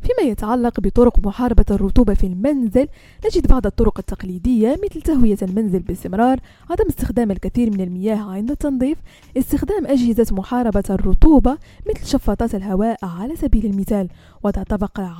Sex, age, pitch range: female, 20-39, 200-260 Hz